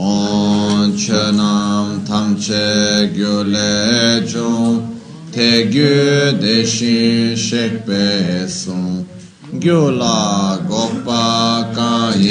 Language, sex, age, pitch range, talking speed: Italian, male, 30-49, 105-120 Hz, 50 wpm